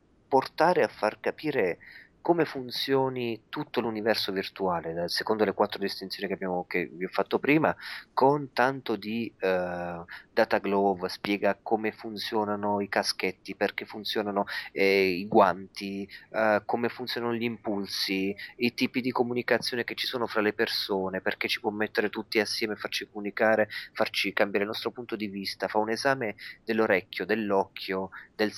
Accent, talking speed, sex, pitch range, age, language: native, 150 wpm, male, 95-120 Hz, 30-49, Italian